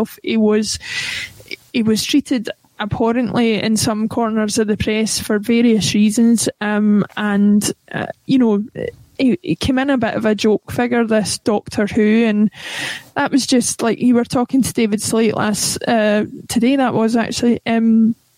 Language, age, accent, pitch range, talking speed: English, 20-39, British, 215-240 Hz, 165 wpm